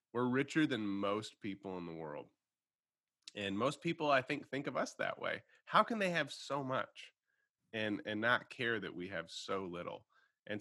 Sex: male